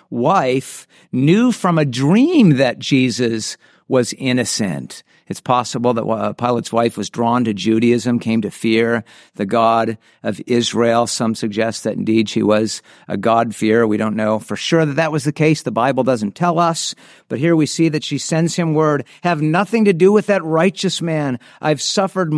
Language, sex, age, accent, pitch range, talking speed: English, male, 50-69, American, 110-145 Hz, 180 wpm